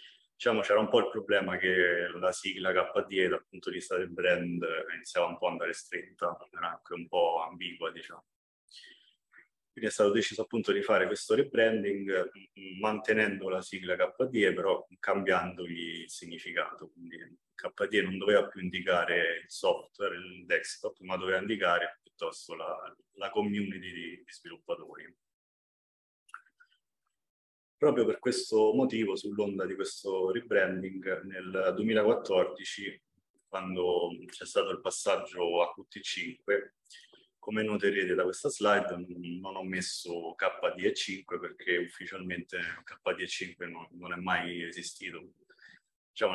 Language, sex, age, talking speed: Italian, male, 30-49, 130 wpm